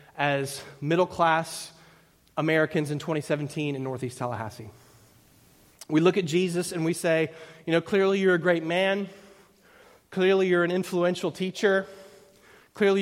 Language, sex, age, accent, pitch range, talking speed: English, male, 30-49, American, 150-200 Hz, 130 wpm